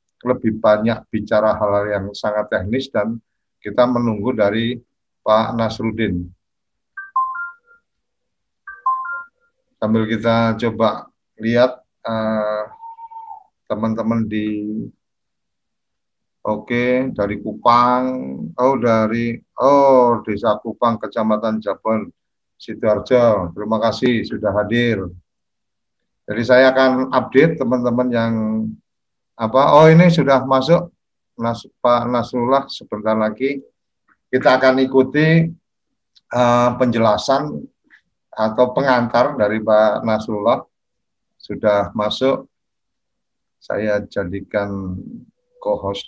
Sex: male